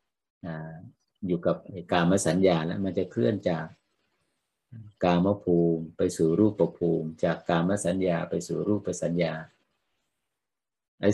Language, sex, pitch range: Thai, male, 85-100 Hz